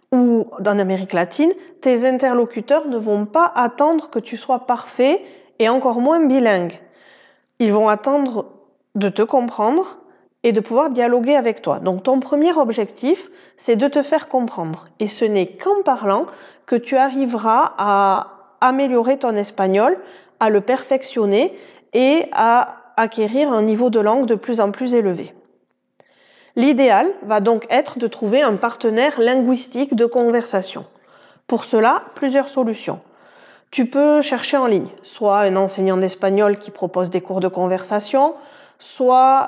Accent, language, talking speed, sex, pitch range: French, French, 145 wpm, female, 205-265 Hz